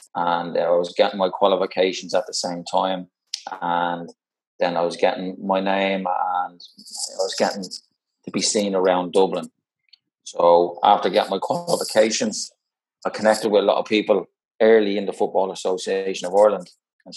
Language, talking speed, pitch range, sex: English, 160 wpm, 90-100 Hz, male